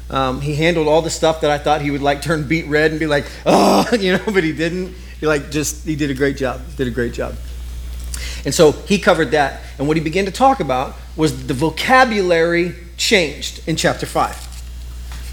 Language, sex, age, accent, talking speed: English, male, 30-49, American, 215 wpm